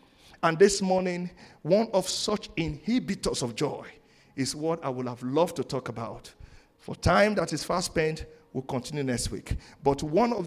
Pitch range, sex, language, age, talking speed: 125-170 Hz, male, English, 50-69, 180 wpm